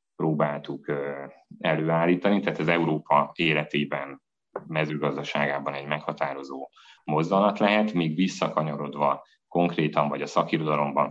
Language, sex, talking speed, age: Hungarian, male, 90 wpm, 30-49